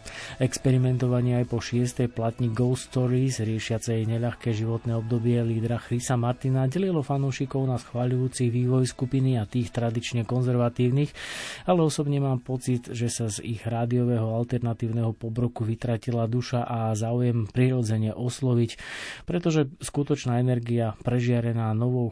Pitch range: 115-130 Hz